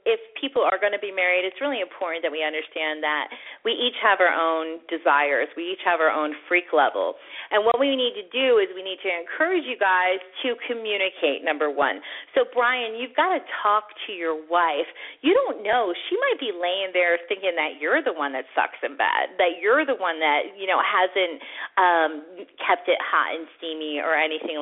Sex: female